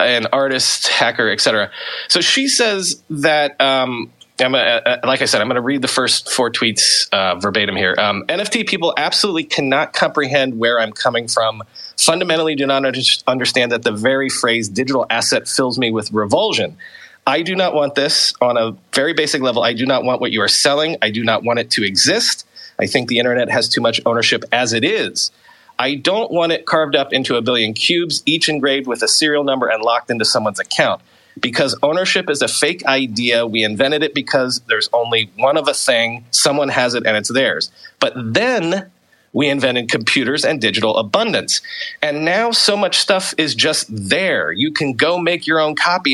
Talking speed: 200 wpm